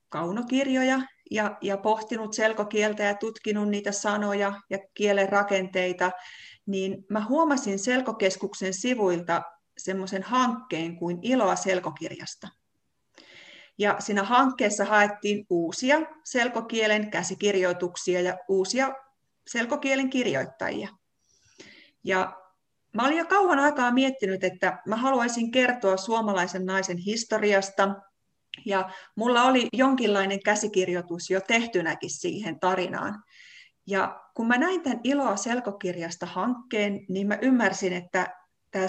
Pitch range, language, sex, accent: 185-245 Hz, Finnish, female, native